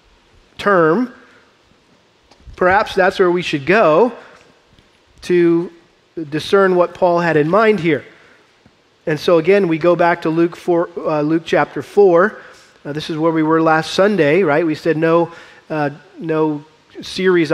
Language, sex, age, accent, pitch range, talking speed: English, male, 40-59, American, 160-195 Hz, 145 wpm